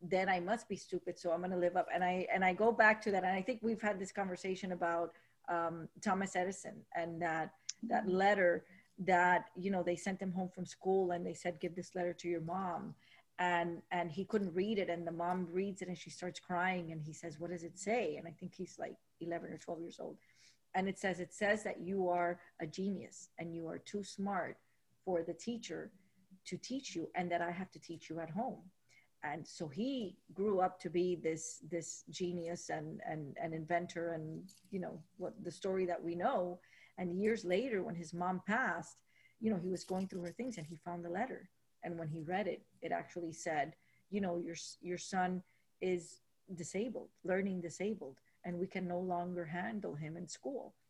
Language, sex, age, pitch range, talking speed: English, female, 40-59, 170-190 Hz, 215 wpm